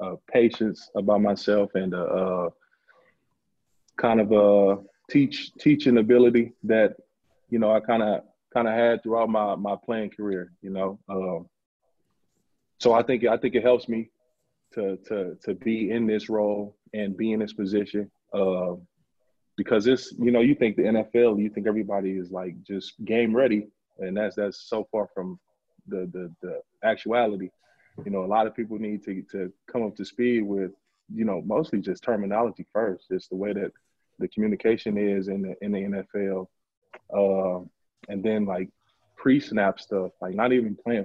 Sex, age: male, 20-39